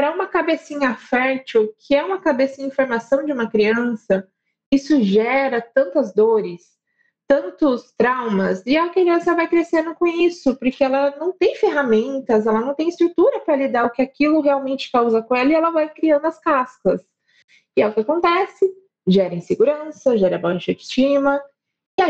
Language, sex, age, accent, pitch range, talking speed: Portuguese, female, 20-39, Brazilian, 220-290 Hz, 165 wpm